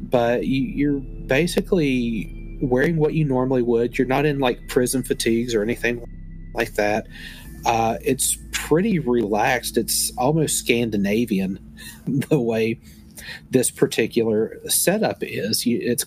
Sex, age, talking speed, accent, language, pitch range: male, 40-59, 120 wpm, American, English, 110-135 Hz